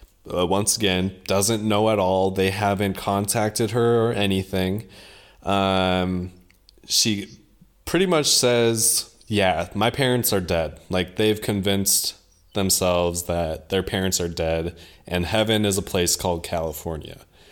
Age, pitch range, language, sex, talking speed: 20-39, 90-110 Hz, English, male, 135 wpm